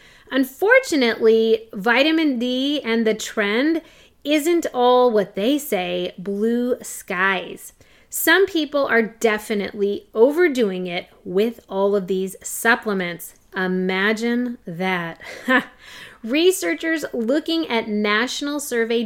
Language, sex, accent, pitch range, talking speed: English, female, American, 200-280 Hz, 100 wpm